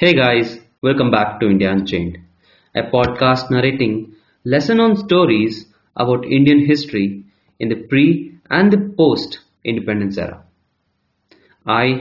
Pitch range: 105-150 Hz